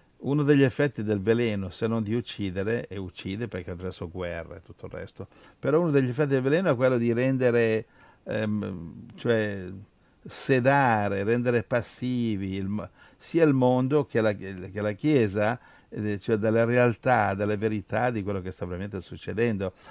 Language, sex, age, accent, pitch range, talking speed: Italian, male, 60-79, native, 100-135 Hz, 160 wpm